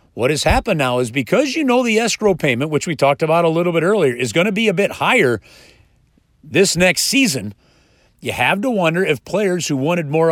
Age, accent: 40-59, American